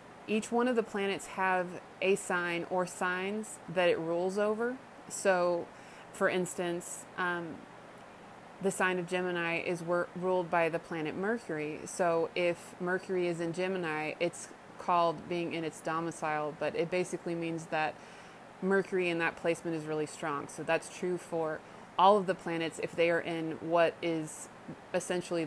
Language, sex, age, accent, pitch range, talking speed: English, female, 20-39, American, 165-185 Hz, 160 wpm